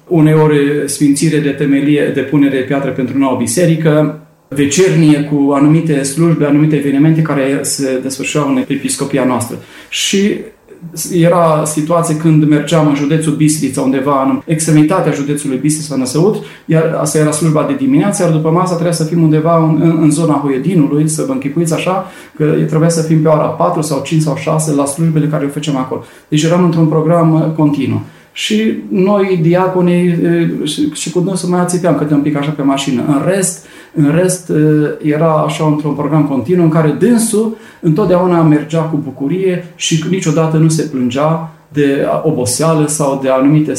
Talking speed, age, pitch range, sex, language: 170 wpm, 30-49, 145-165 Hz, male, Romanian